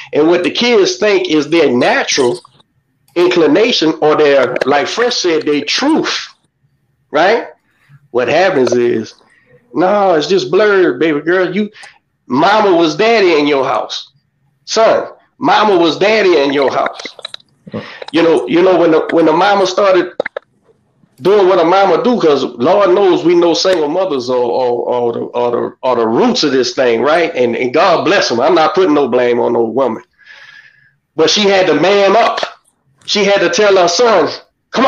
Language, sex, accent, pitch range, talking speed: English, male, American, 145-210 Hz, 170 wpm